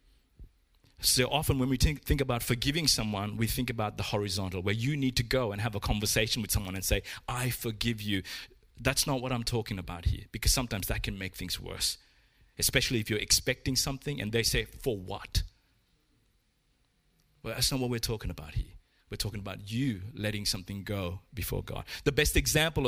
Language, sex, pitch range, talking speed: English, male, 100-130 Hz, 195 wpm